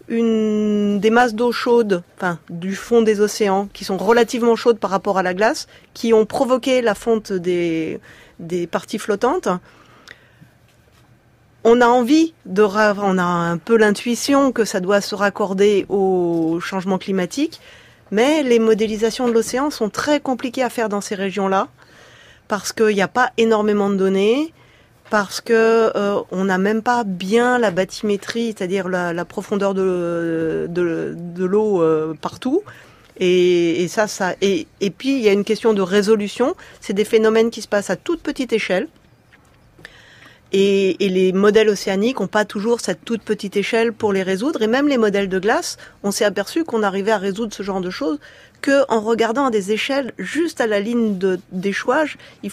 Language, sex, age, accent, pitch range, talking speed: French, female, 30-49, French, 195-235 Hz, 175 wpm